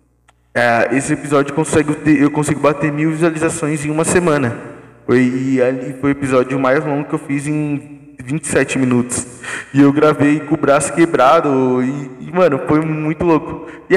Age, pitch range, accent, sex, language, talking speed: 20-39, 125-160 Hz, Brazilian, male, Portuguese, 150 wpm